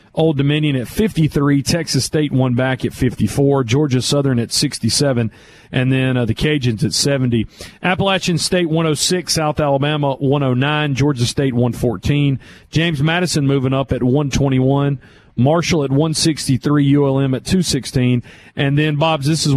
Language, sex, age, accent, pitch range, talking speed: English, male, 40-59, American, 125-165 Hz, 185 wpm